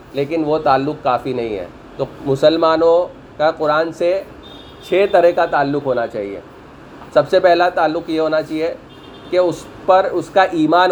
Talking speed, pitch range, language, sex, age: 165 wpm, 145-175 Hz, Urdu, male, 30-49